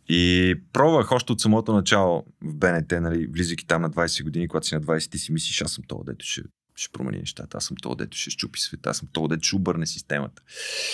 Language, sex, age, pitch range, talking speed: Bulgarian, male, 20-39, 80-95 Hz, 235 wpm